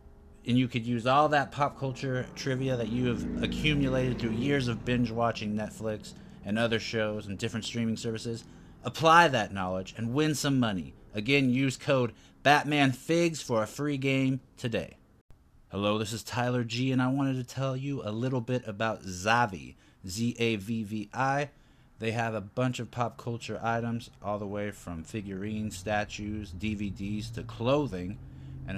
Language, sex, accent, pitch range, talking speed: English, male, American, 100-125 Hz, 160 wpm